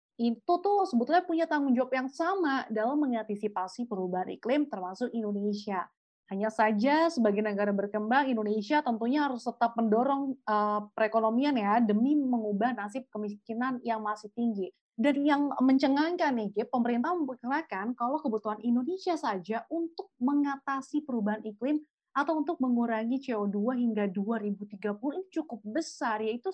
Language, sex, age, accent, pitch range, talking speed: Indonesian, female, 20-39, native, 215-280 Hz, 130 wpm